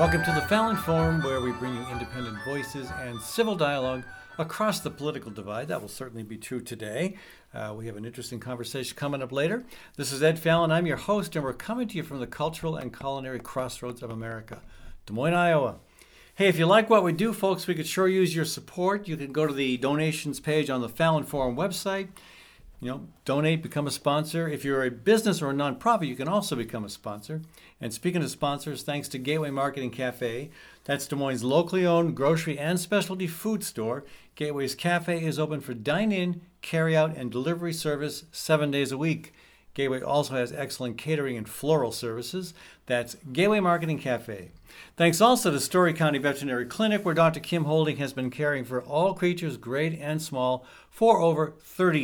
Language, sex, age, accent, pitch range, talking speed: English, male, 60-79, American, 130-170 Hz, 195 wpm